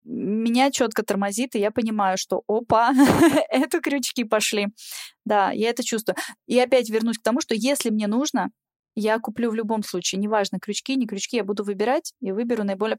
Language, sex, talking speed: Russian, female, 180 wpm